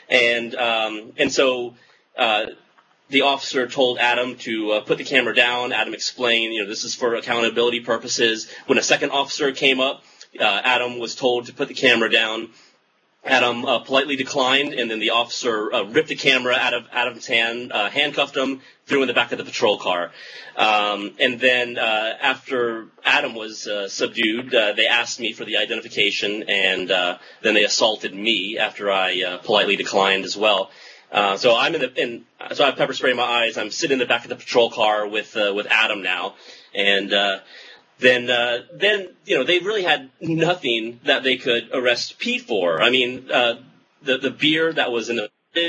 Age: 30-49